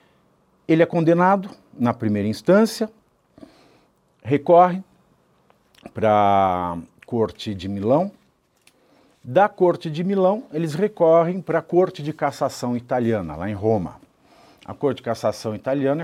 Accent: Brazilian